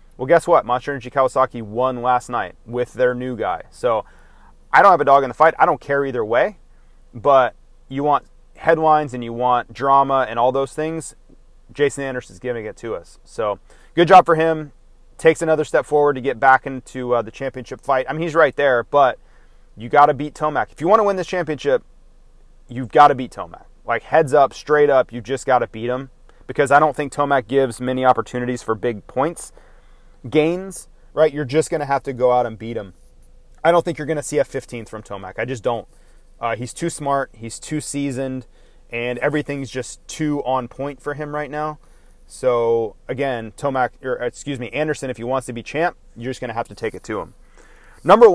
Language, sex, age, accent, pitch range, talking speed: English, male, 30-49, American, 125-150 Hz, 215 wpm